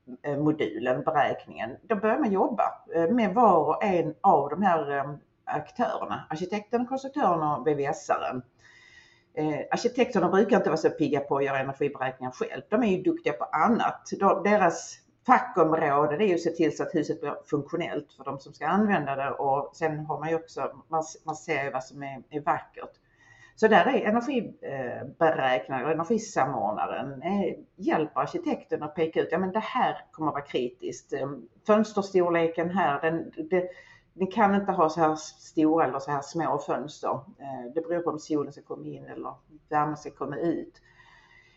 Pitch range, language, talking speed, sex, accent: 150-205 Hz, Swedish, 165 wpm, female, native